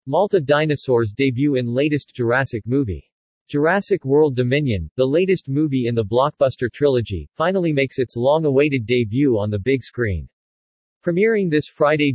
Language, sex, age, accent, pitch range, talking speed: English, male, 40-59, American, 120-150 Hz, 145 wpm